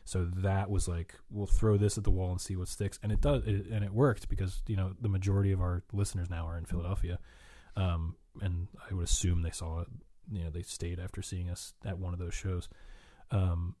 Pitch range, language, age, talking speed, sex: 90-100 Hz, English, 20-39, 235 wpm, male